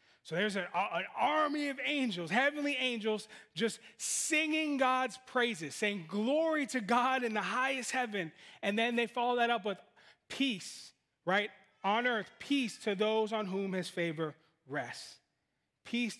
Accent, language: American, English